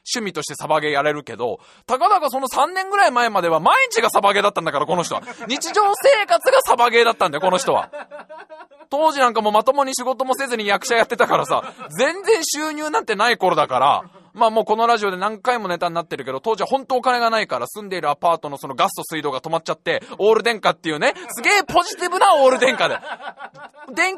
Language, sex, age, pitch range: Japanese, male, 20-39, 210-310 Hz